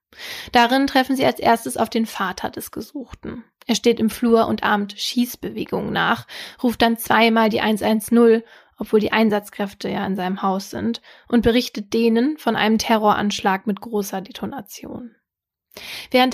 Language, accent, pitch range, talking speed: German, German, 210-240 Hz, 150 wpm